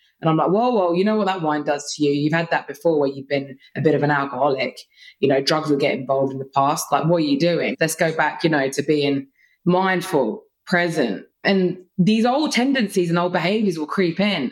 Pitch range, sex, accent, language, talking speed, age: 155-210 Hz, female, British, English, 240 wpm, 20-39